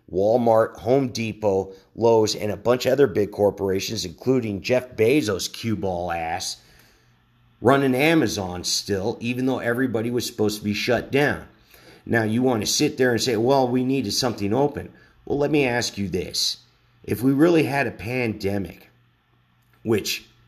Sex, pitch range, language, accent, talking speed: male, 100-125 Hz, English, American, 160 wpm